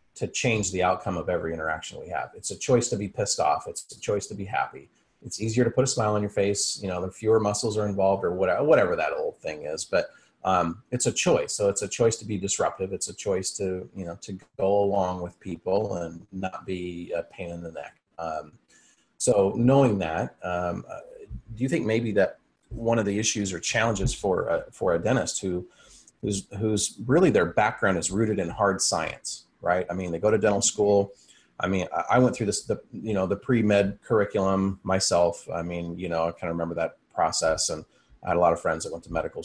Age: 30-49